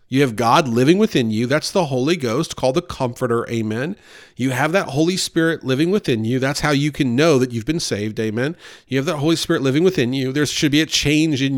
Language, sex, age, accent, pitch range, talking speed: English, male, 40-59, American, 125-155 Hz, 240 wpm